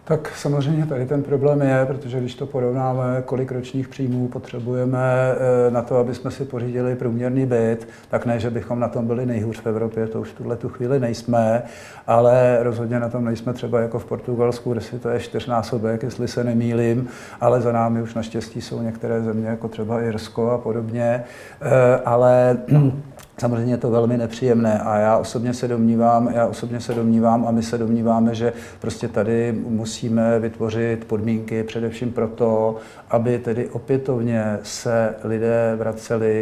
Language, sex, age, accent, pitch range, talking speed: Czech, male, 50-69, native, 115-125 Hz, 160 wpm